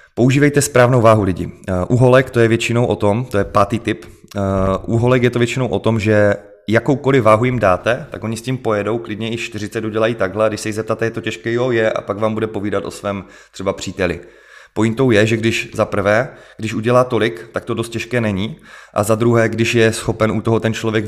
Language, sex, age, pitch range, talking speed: Czech, male, 30-49, 100-115 Hz, 220 wpm